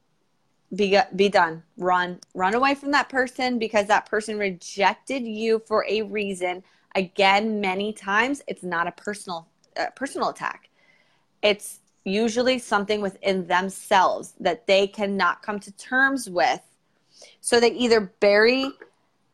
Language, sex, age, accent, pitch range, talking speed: English, female, 20-39, American, 190-220 Hz, 135 wpm